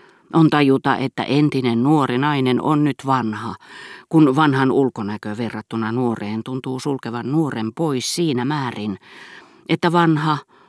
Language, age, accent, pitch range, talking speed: Finnish, 40-59, native, 115-155 Hz, 125 wpm